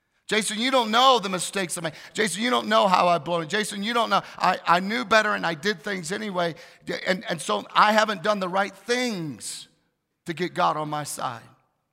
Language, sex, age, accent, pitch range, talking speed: English, male, 40-59, American, 160-210 Hz, 215 wpm